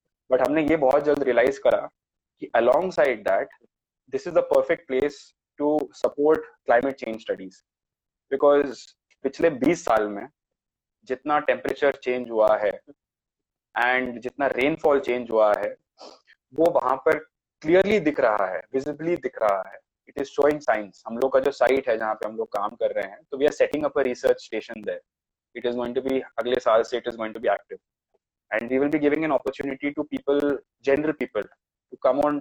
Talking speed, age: 155 wpm, 20-39